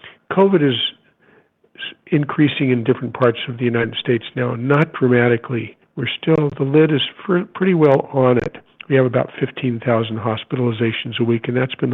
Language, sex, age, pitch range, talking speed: English, male, 50-69, 120-140 Hz, 160 wpm